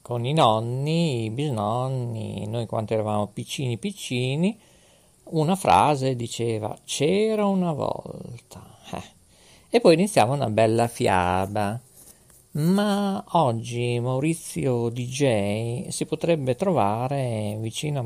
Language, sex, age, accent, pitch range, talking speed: Italian, male, 50-69, native, 110-160 Hz, 105 wpm